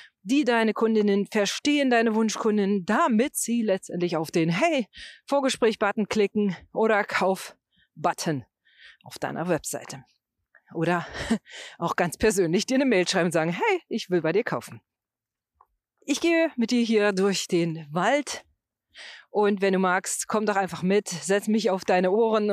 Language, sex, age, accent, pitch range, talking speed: German, female, 40-59, German, 175-240 Hz, 145 wpm